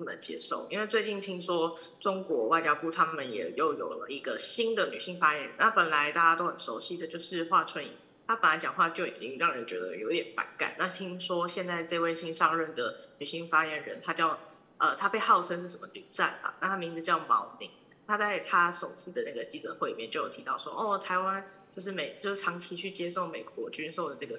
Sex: female